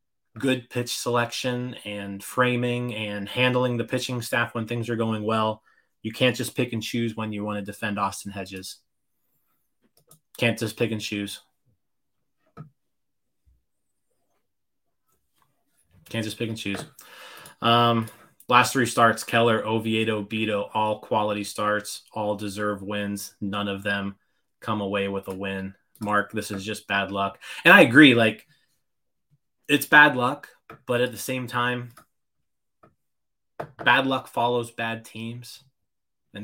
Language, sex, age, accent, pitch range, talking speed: English, male, 20-39, American, 105-120 Hz, 135 wpm